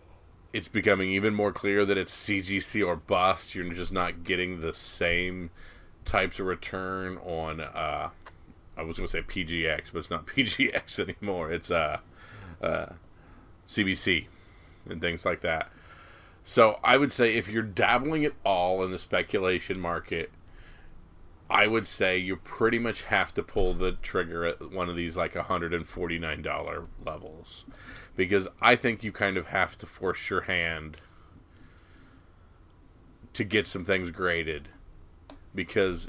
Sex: male